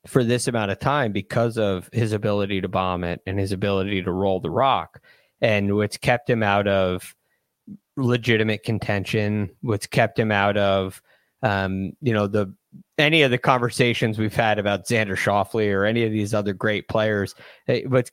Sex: male